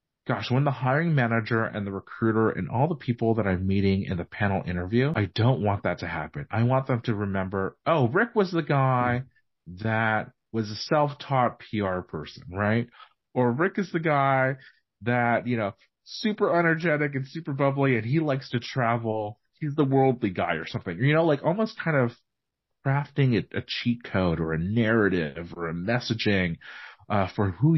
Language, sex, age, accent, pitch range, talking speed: English, male, 30-49, American, 100-130 Hz, 185 wpm